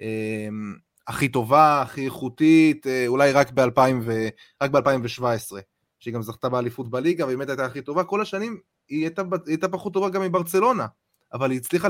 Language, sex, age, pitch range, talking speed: Hebrew, male, 20-39, 125-180 Hz, 160 wpm